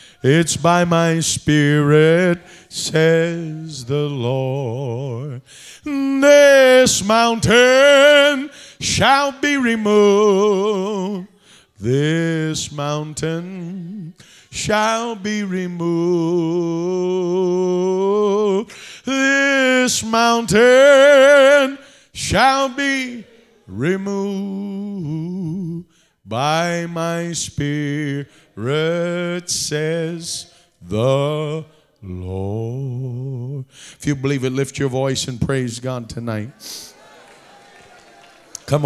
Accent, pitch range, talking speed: American, 145-210 Hz, 65 wpm